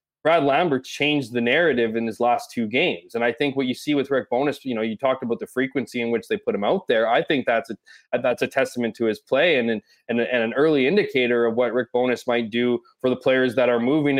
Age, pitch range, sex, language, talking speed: 20-39, 120-150 Hz, male, English, 260 wpm